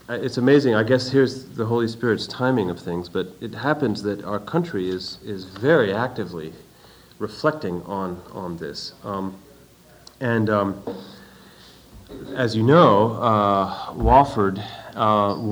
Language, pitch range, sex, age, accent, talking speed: English, 95-125 Hz, male, 40-59, American, 130 wpm